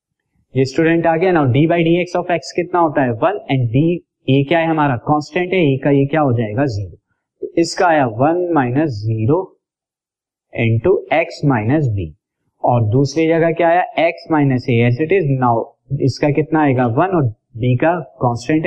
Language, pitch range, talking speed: Hindi, 125-165 Hz, 150 wpm